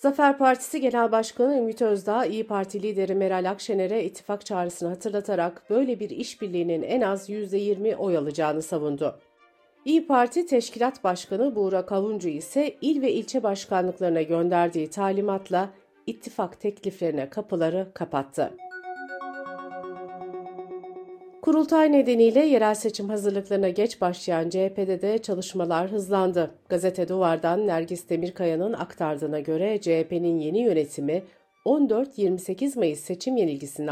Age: 50-69